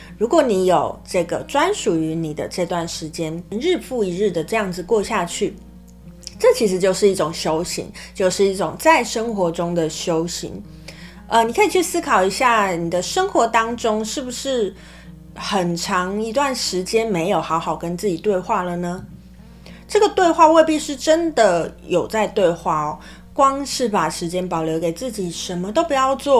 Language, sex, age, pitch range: Chinese, female, 30-49, 170-225 Hz